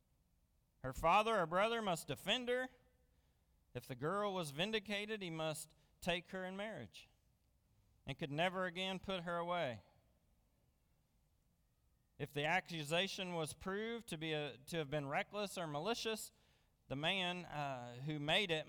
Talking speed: 145 wpm